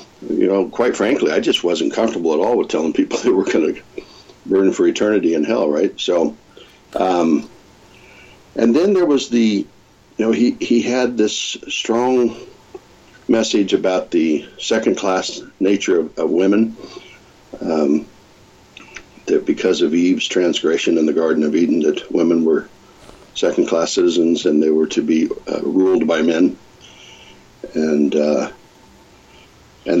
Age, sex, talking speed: 60-79, male, 145 wpm